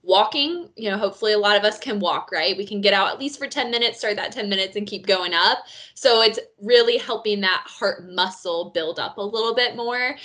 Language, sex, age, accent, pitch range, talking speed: English, female, 20-39, American, 195-255 Hz, 240 wpm